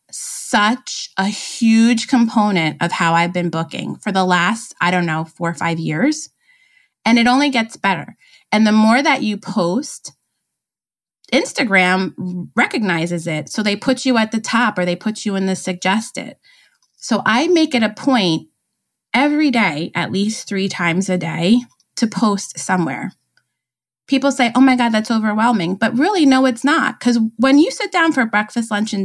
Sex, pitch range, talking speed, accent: female, 190-260 Hz, 175 wpm, American